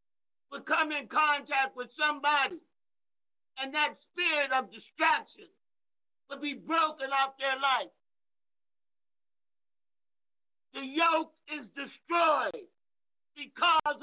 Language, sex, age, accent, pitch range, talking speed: English, male, 50-69, American, 265-300 Hz, 95 wpm